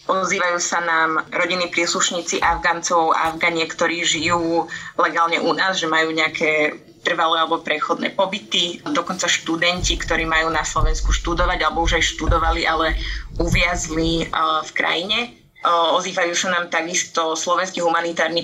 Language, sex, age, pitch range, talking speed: Slovak, female, 20-39, 160-175 Hz, 130 wpm